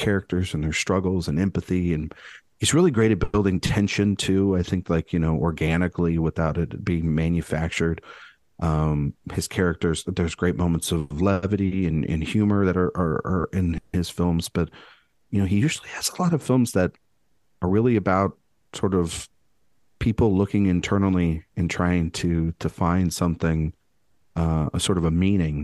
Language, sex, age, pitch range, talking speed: English, male, 40-59, 85-100 Hz, 170 wpm